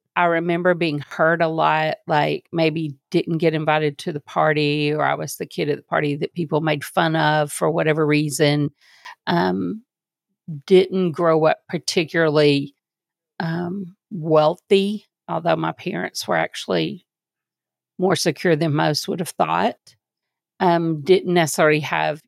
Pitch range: 155-190 Hz